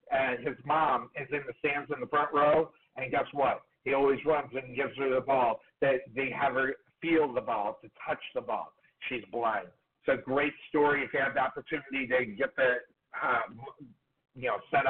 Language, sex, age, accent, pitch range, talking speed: English, male, 50-69, American, 135-175 Hz, 205 wpm